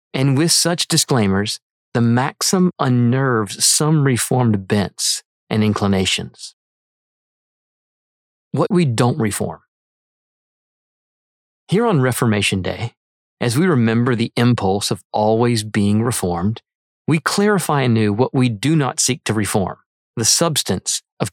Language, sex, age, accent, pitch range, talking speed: English, male, 40-59, American, 110-155 Hz, 120 wpm